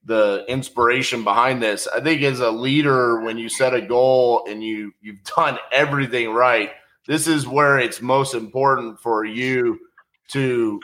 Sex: male